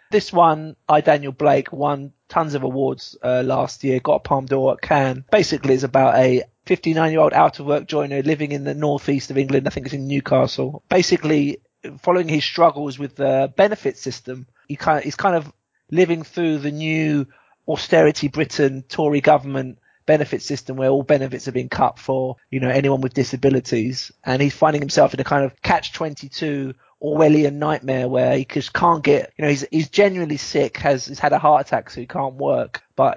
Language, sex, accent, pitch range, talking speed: English, male, British, 135-155 Hz, 205 wpm